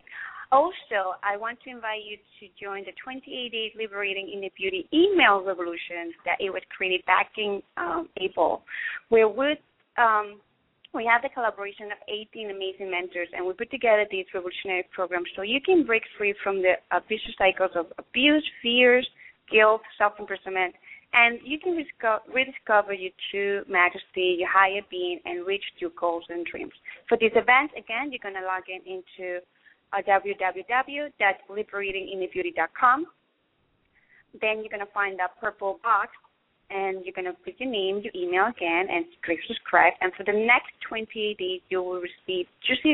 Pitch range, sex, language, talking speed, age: 190-250 Hz, female, English, 165 wpm, 30-49